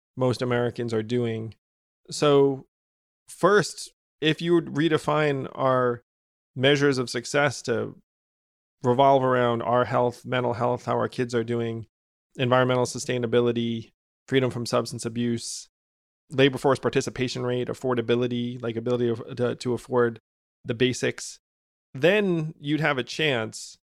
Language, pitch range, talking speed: English, 120-140 Hz, 125 wpm